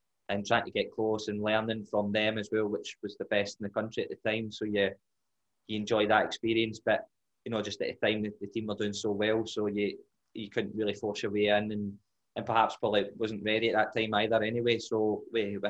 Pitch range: 100-110 Hz